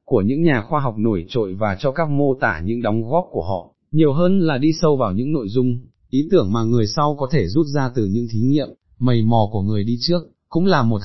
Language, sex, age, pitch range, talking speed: Vietnamese, male, 20-39, 115-145 Hz, 260 wpm